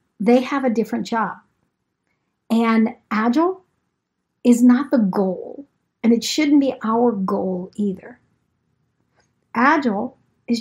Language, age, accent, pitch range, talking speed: English, 50-69, American, 210-270 Hz, 115 wpm